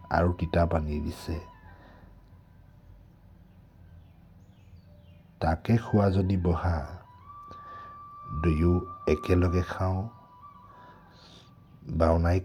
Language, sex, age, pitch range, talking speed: English, male, 60-79, 80-95 Hz, 65 wpm